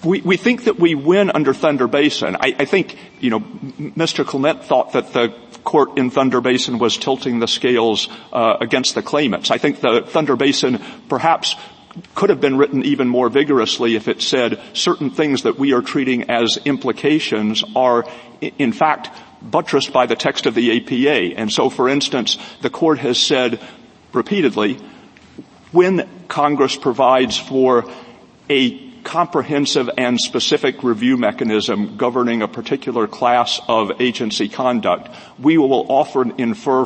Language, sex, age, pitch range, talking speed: English, male, 50-69, 115-145 Hz, 155 wpm